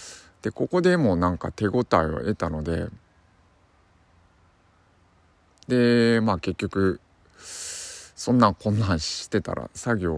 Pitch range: 85-110 Hz